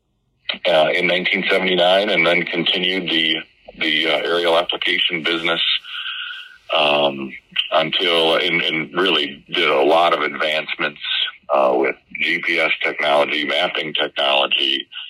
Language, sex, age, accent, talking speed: English, male, 40-59, American, 110 wpm